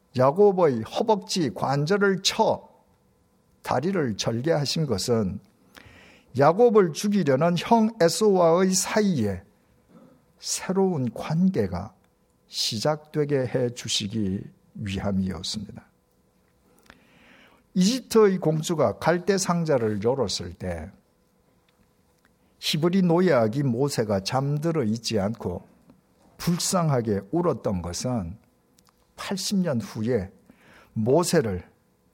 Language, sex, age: Korean, male, 50-69